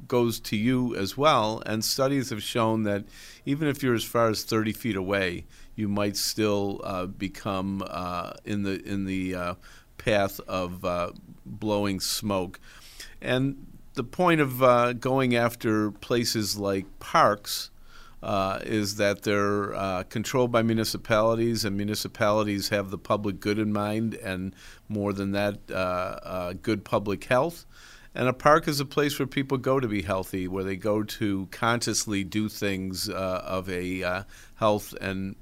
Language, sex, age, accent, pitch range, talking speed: English, male, 50-69, American, 95-115 Hz, 160 wpm